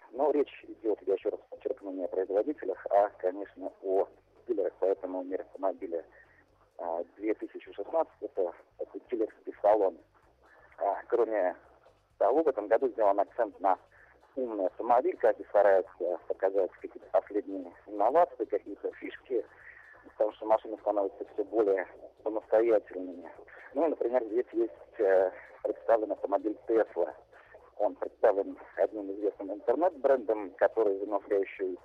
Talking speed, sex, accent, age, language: 115 wpm, male, native, 40-59, Russian